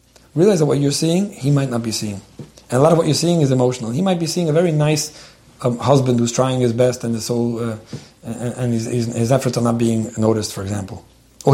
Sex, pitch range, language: male, 120-150 Hz, English